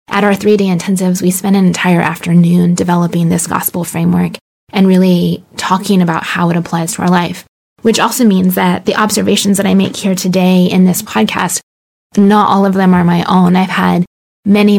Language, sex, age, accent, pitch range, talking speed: English, female, 20-39, American, 180-200 Hz, 190 wpm